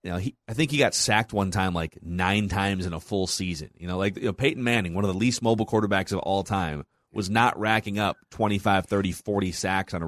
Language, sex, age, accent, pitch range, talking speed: English, male, 30-49, American, 95-120 Hz, 260 wpm